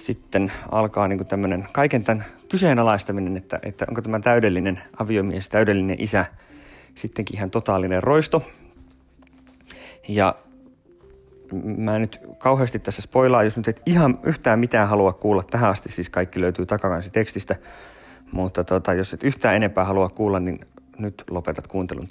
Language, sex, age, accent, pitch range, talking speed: Finnish, male, 30-49, native, 90-115 Hz, 140 wpm